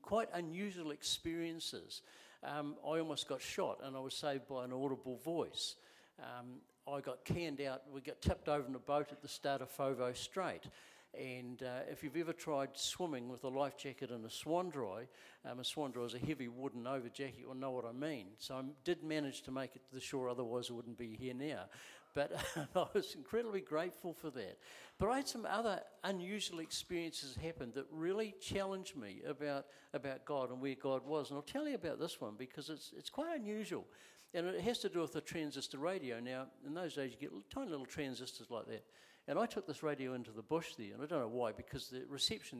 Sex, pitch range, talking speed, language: male, 135-190 Hz, 220 wpm, English